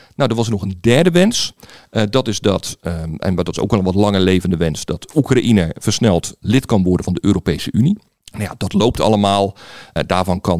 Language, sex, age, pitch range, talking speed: Dutch, male, 50-69, 100-135 Hz, 215 wpm